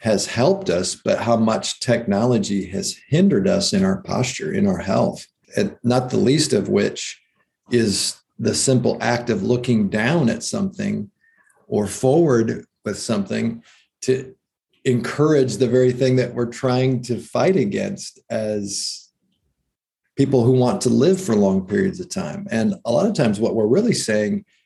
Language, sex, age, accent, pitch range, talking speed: English, male, 40-59, American, 115-150 Hz, 160 wpm